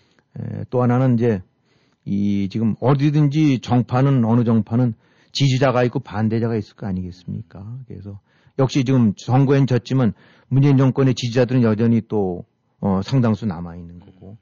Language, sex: Korean, male